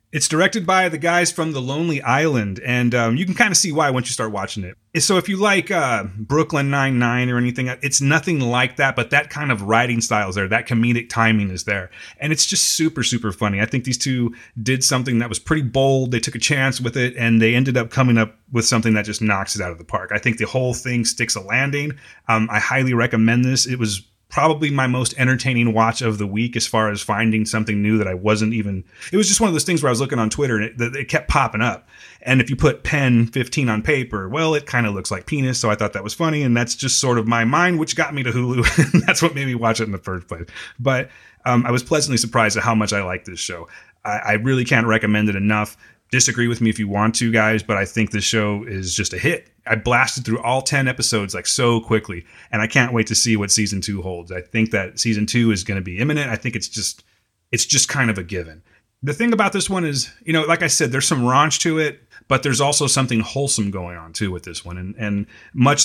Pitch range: 110-135 Hz